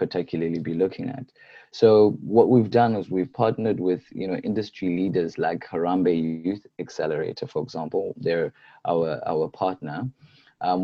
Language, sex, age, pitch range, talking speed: English, male, 20-39, 90-115 Hz, 150 wpm